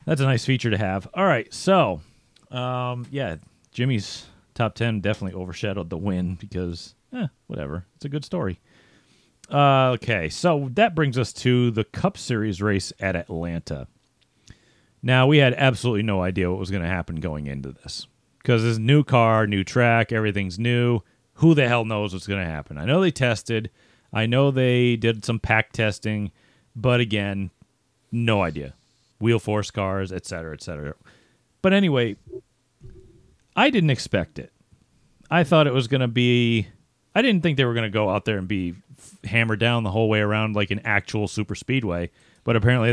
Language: English